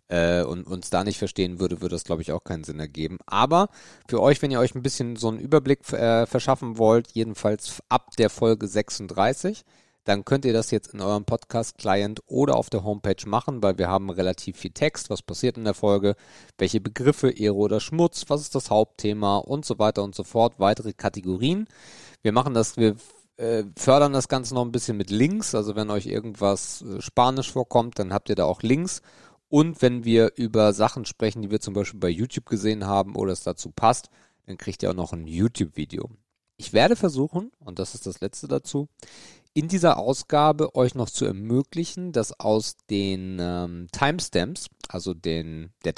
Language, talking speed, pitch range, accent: German, 190 wpm, 95-125 Hz, German